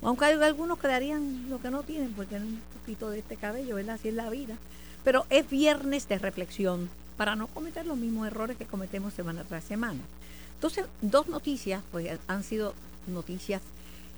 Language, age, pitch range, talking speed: Spanish, 50-69, 155-235 Hz, 180 wpm